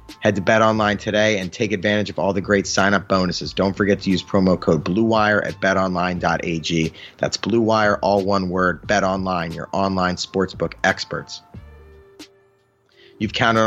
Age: 30-49